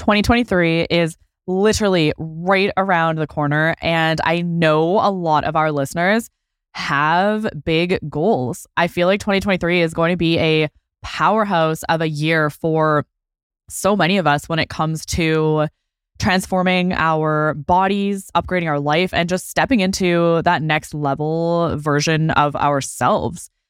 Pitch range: 155-185 Hz